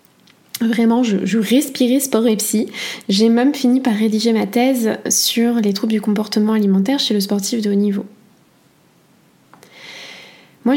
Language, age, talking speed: French, 20-39, 150 wpm